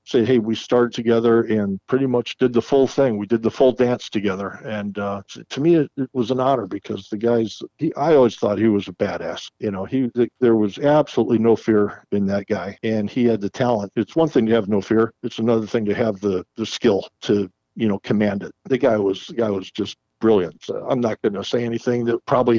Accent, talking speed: American, 240 wpm